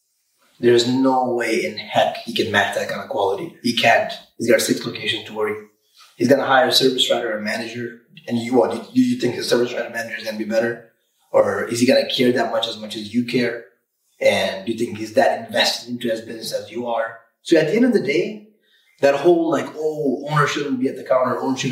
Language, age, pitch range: English, 30-49, 115-155 Hz